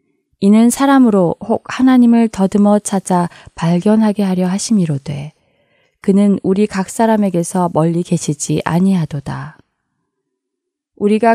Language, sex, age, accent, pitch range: Korean, female, 20-39, native, 170-215 Hz